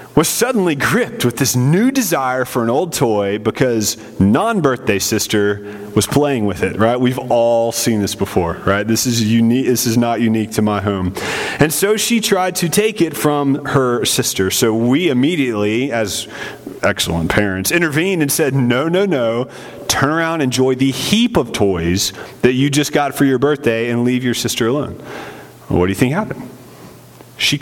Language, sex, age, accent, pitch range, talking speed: English, male, 30-49, American, 115-185 Hz, 180 wpm